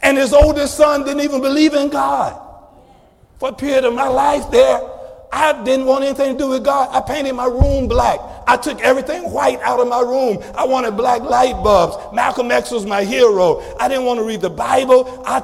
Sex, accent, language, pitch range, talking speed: male, American, English, 245-290 Hz, 215 wpm